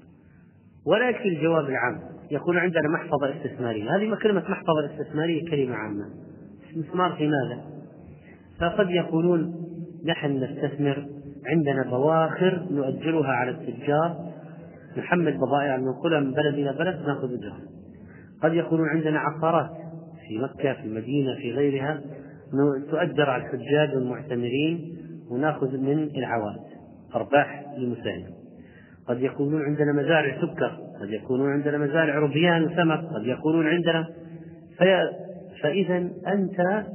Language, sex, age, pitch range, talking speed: Arabic, male, 30-49, 135-170 Hz, 110 wpm